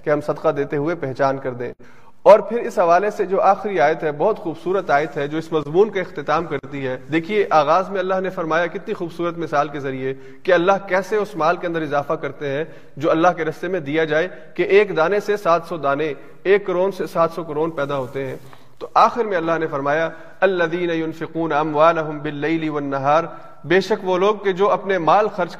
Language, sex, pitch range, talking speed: Urdu, male, 150-190 Hz, 215 wpm